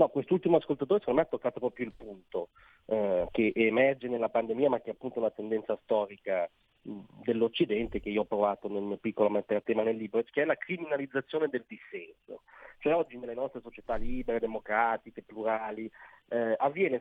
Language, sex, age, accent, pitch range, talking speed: Italian, male, 40-59, native, 115-145 Hz, 185 wpm